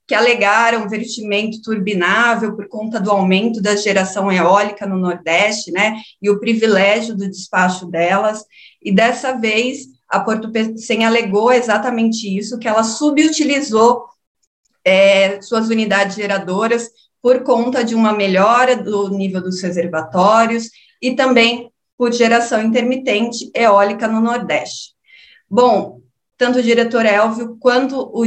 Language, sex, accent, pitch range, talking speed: Portuguese, female, Brazilian, 195-235 Hz, 125 wpm